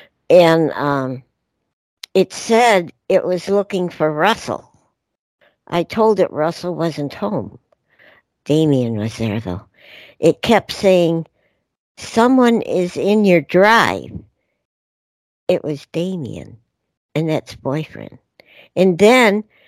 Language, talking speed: English, 105 wpm